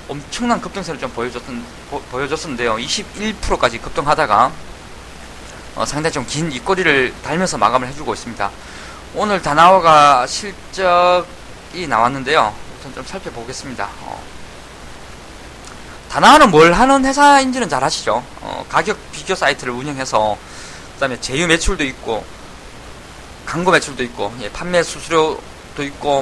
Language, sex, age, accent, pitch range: Korean, male, 20-39, native, 130-200 Hz